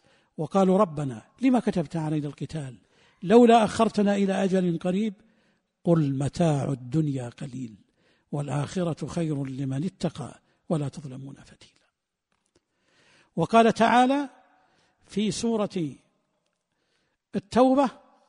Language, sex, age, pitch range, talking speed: Arabic, male, 60-79, 155-225 Hz, 90 wpm